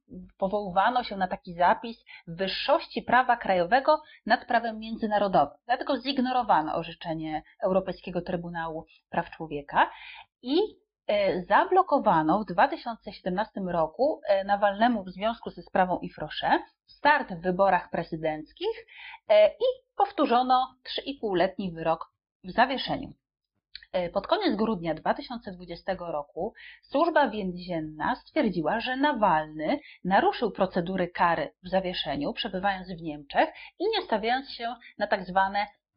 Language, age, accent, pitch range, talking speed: Polish, 30-49, native, 175-255 Hz, 105 wpm